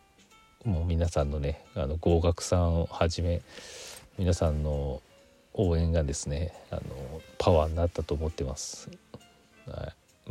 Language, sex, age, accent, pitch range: Japanese, male, 40-59, native, 85-115 Hz